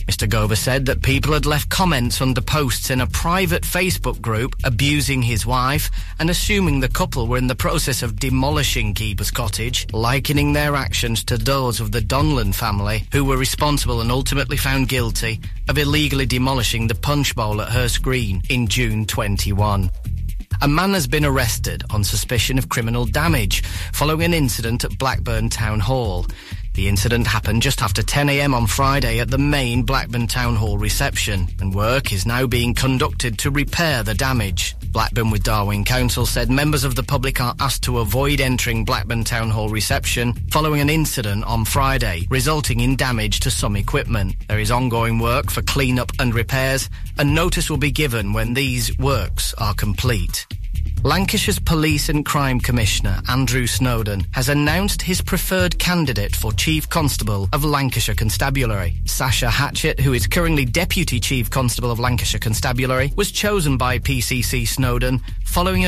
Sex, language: male, English